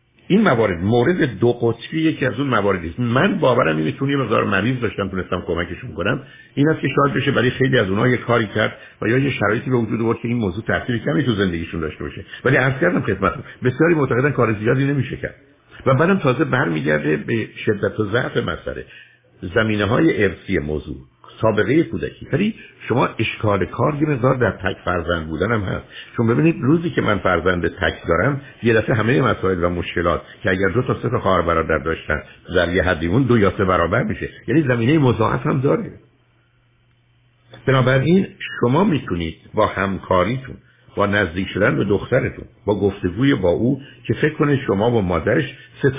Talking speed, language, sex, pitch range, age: 185 wpm, Persian, male, 95-130 Hz, 60-79